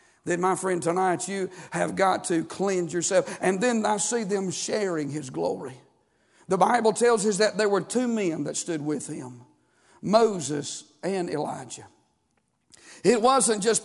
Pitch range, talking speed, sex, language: 180-240 Hz, 160 wpm, male, English